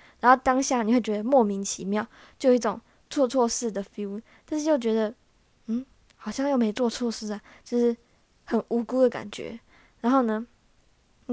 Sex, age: female, 10-29